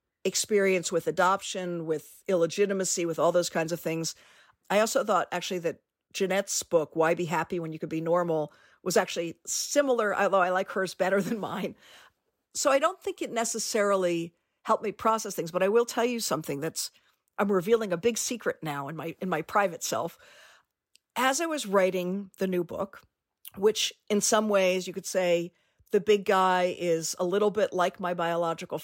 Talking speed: 185 wpm